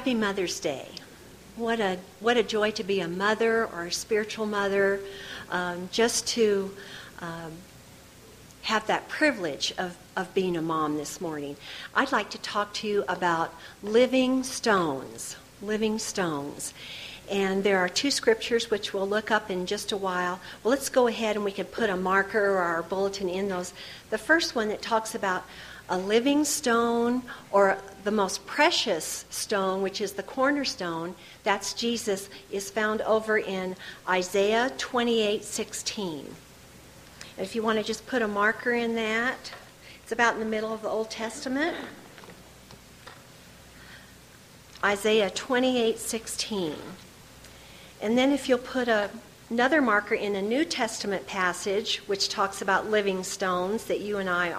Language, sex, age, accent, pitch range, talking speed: English, female, 50-69, American, 190-230 Hz, 150 wpm